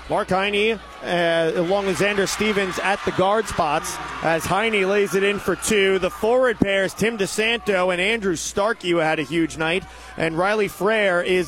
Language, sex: English, male